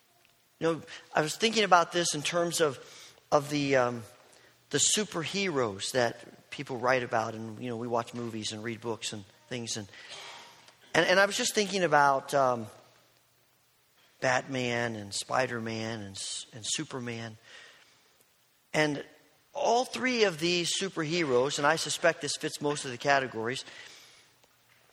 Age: 40-59